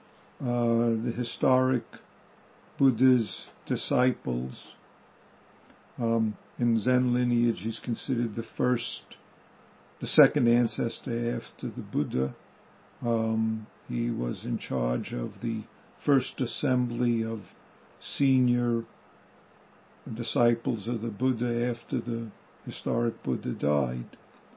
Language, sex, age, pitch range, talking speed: English, male, 50-69, 115-130 Hz, 95 wpm